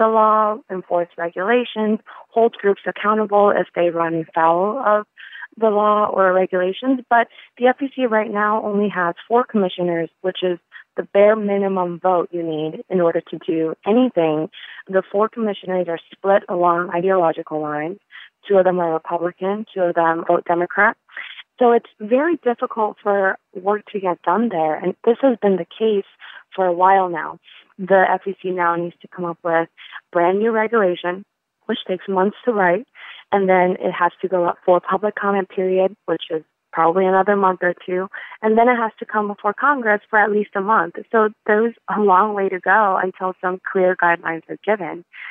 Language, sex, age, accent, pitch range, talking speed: English, female, 30-49, American, 175-215 Hz, 180 wpm